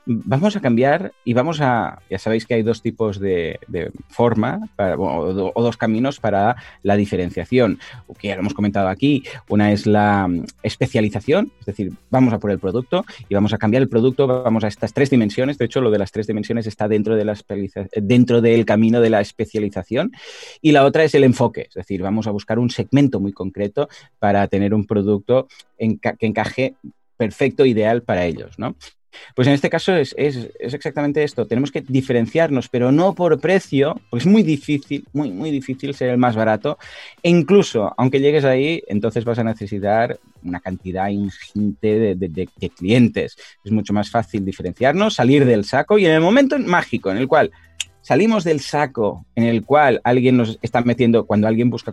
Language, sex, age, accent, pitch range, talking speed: Spanish, male, 30-49, Spanish, 105-135 Hz, 190 wpm